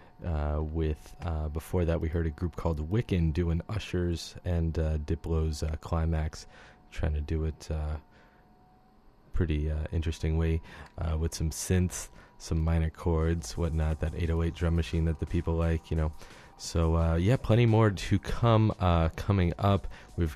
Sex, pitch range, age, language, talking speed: male, 80-90 Hz, 30-49, English, 165 wpm